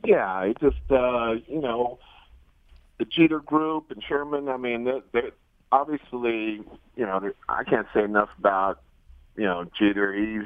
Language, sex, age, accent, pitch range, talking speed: English, male, 50-69, American, 100-125 Hz, 155 wpm